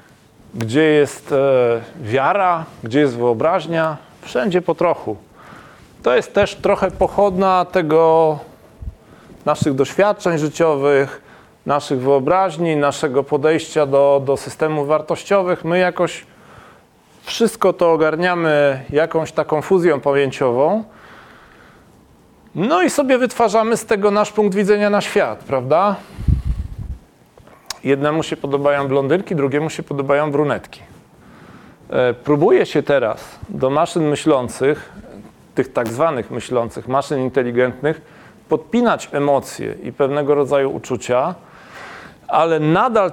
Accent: native